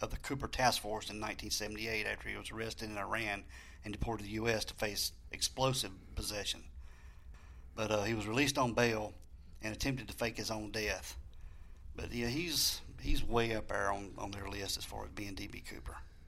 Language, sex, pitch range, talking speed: English, male, 80-115 Hz, 195 wpm